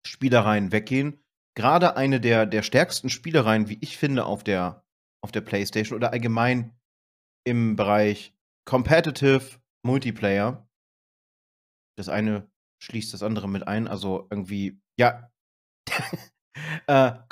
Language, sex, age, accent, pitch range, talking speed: German, male, 30-49, German, 105-135 Hz, 110 wpm